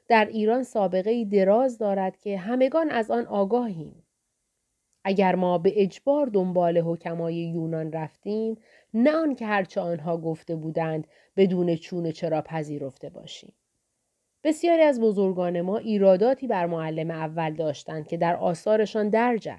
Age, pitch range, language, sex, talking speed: 30-49, 175-245 Hz, Persian, female, 135 wpm